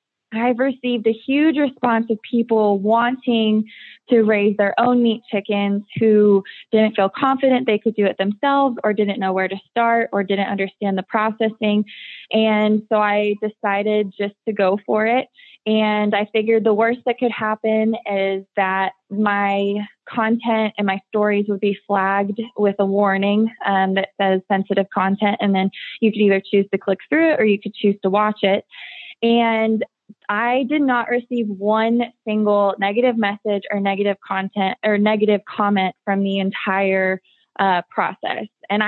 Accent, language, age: American, English, 20-39